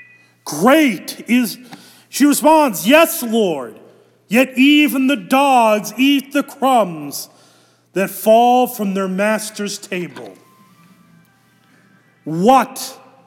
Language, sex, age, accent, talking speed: English, male, 40-59, American, 90 wpm